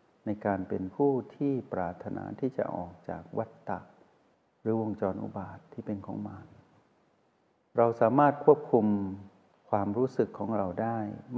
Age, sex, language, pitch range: 60-79, male, Thai, 100-125 Hz